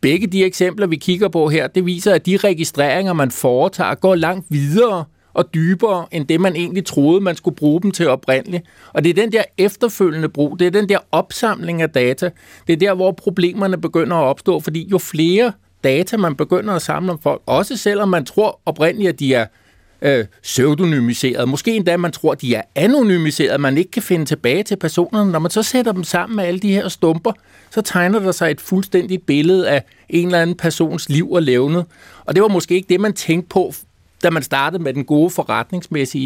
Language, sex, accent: Danish, male, native